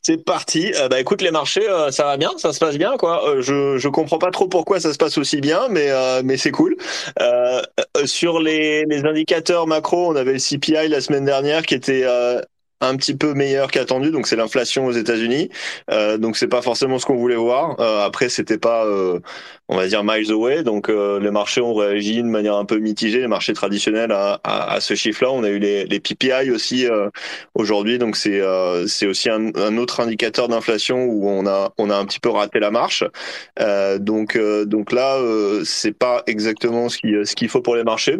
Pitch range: 105-130 Hz